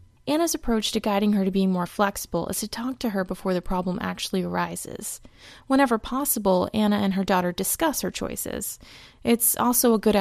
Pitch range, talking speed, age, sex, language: 195-240 Hz, 190 wpm, 20-39, female, English